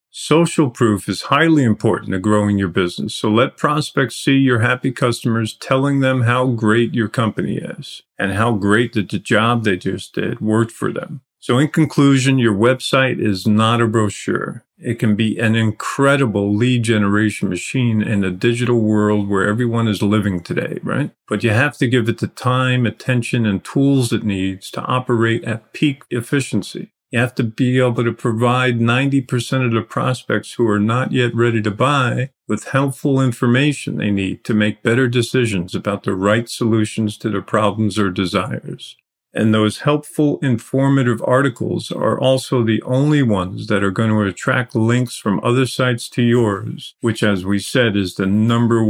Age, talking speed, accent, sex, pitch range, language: 50-69, 175 wpm, American, male, 105-130 Hz, English